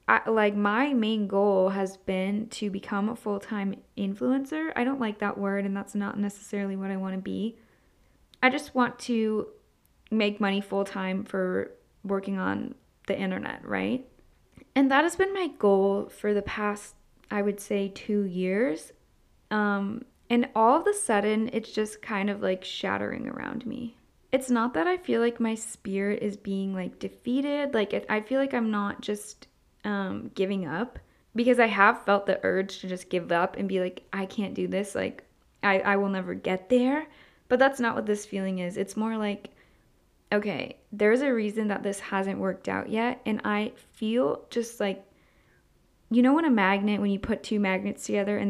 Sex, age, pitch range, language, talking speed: female, 10-29, 195-240 Hz, English, 185 wpm